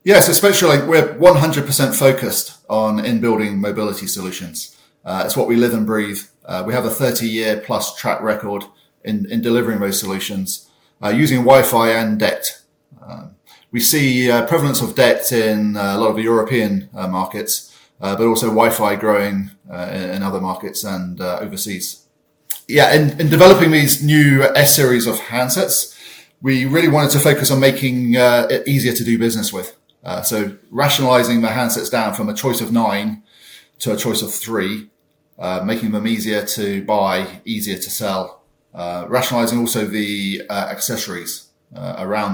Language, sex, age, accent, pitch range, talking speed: English, male, 30-49, British, 100-135 Hz, 170 wpm